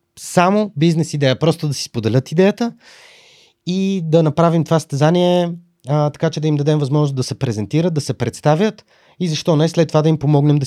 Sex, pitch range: male, 120-160 Hz